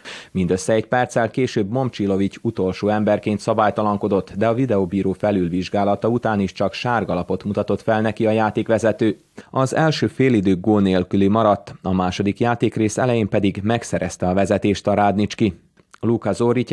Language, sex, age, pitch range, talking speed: Hungarian, male, 30-49, 95-115 Hz, 140 wpm